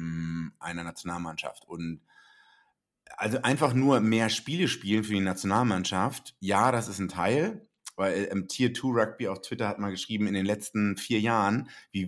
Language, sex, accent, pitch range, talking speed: German, male, German, 95-115 Hz, 165 wpm